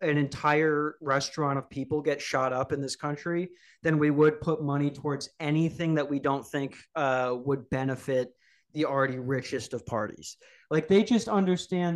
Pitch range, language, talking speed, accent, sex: 135-160 Hz, English, 170 wpm, American, male